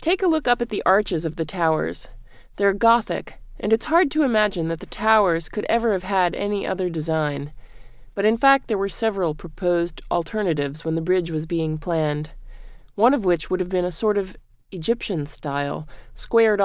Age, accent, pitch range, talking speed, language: 30-49, American, 155-205 Hz, 190 wpm, English